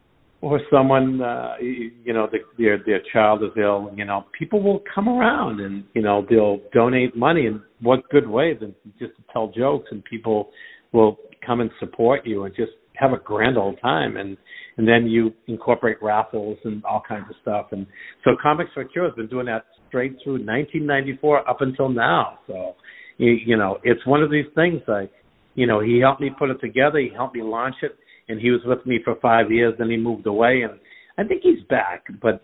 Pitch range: 110-135 Hz